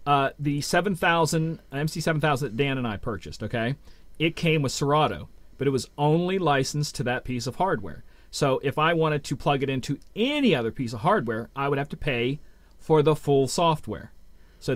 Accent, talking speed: American, 185 wpm